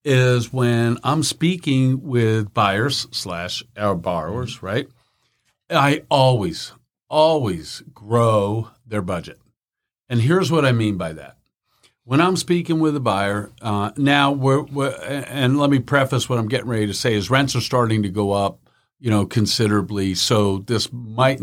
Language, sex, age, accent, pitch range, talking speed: English, male, 50-69, American, 105-130 Hz, 155 wpm